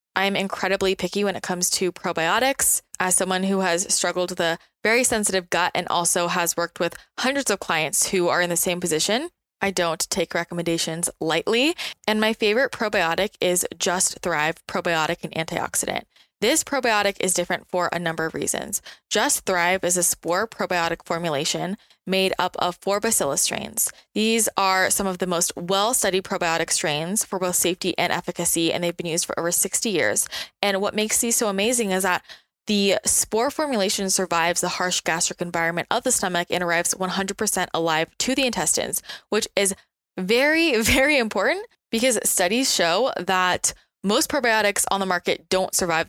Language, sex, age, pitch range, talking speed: English, female, 20-39, 170-200 Hz, 175 wpm